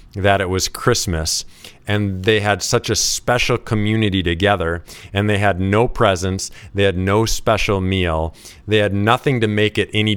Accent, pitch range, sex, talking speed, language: American, 90-105 Hz, male, 170 wpm, English